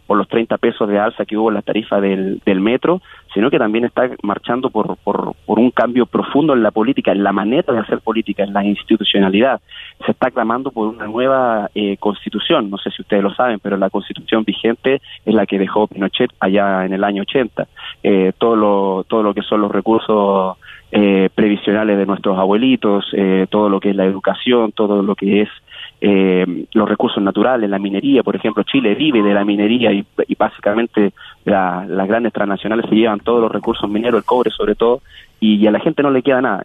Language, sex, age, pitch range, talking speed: Spanish, male, 30-49, 100-115 Hz, 210 wpm